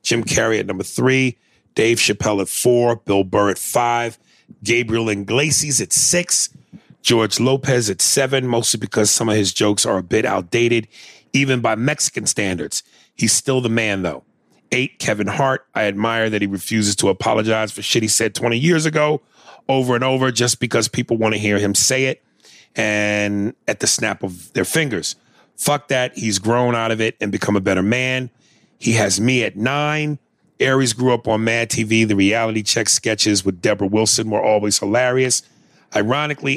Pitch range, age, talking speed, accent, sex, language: 105-125 Hz, 40-59, 180 wpm, American, male, English